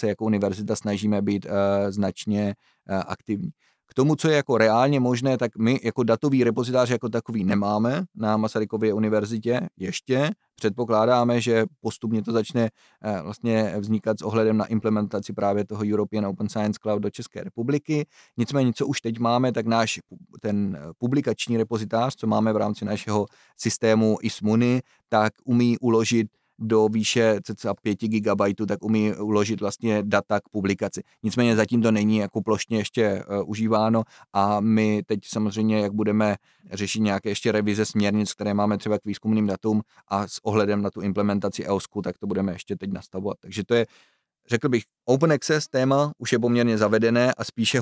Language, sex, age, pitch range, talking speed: Czech, male, 30-49, 105-115 Hz, 165 wpm